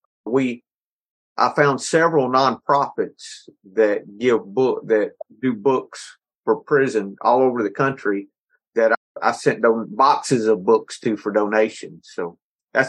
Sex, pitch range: male, 110-160 Hz